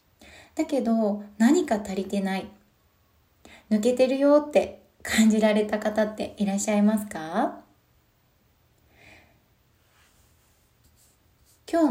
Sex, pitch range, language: female, 200-260 Hz, Japanese